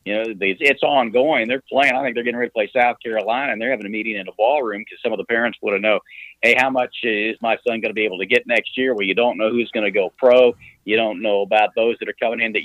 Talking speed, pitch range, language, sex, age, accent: 305 wpm, 110-130 Hz, English, male, 50-69, American